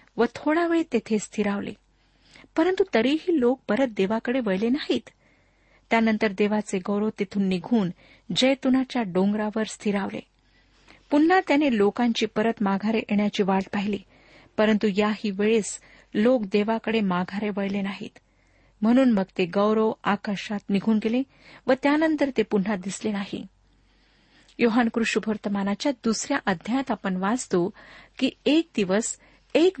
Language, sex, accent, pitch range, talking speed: Marathi, female, native, 205-245 Hz, 120 wpm